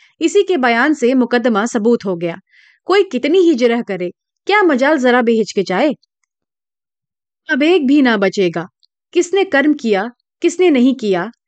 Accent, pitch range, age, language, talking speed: native, 210-330 Hz, 30-49, Hindi, 105 wpm